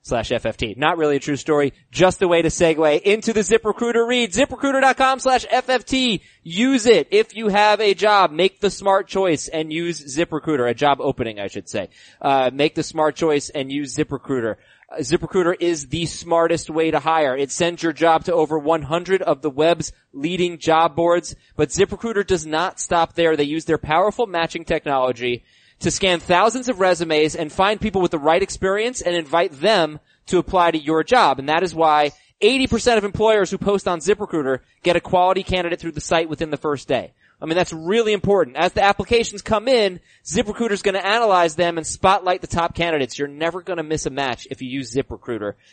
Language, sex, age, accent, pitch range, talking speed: English, male, 20-39, American, 155-200 Hz, 205 wpm